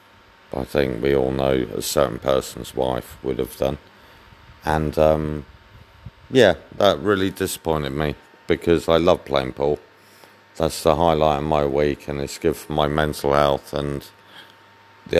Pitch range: 75-90 Hz